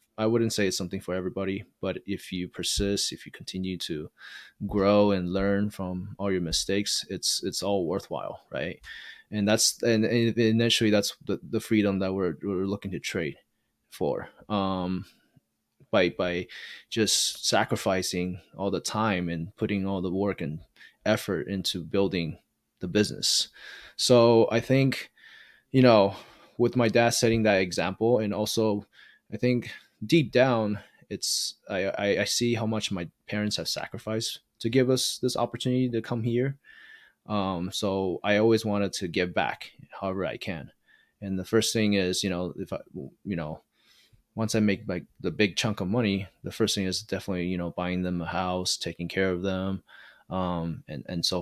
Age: 20-39